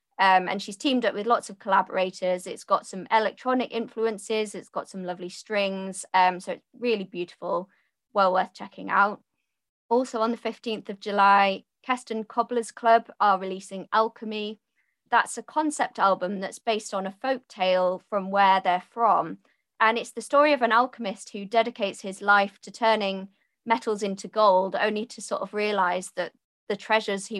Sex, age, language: female, 20-39, English